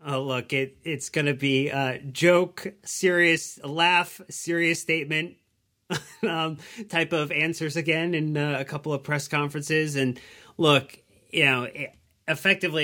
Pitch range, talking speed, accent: 115-145 Hz, 155 wpm, American